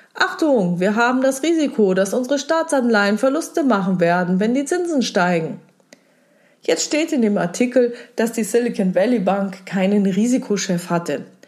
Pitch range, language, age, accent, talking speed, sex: 180-240 Hz, German, 30-49, German, 145 wpm, female